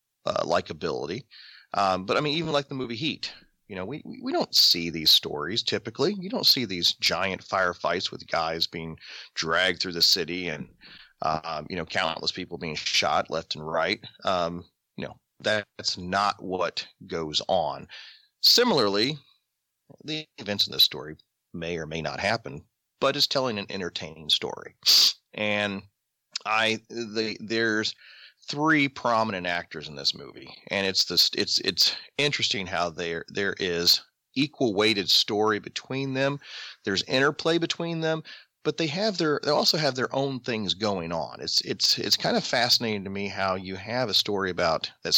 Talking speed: 165 wpm